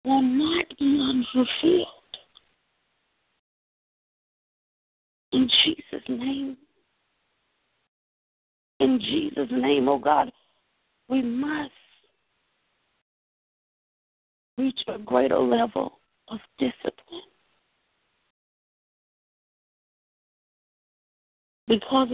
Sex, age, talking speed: female, 50-69, 55 wpm